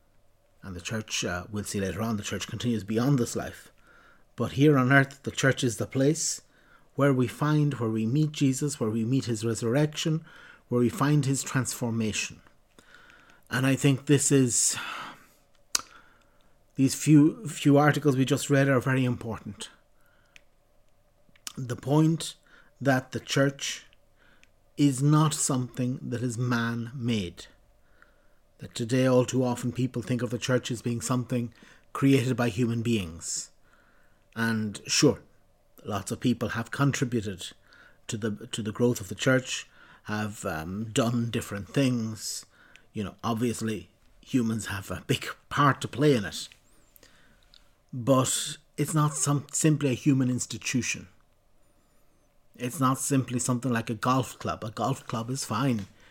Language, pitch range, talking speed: English, 115-135 Hz, 145 wpm